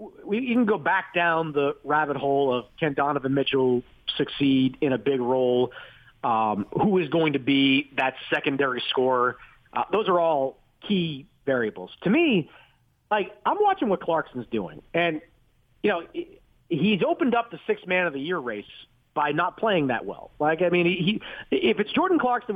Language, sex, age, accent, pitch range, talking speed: English, male, 40-59, American, 135-210 Hz, 180 wpm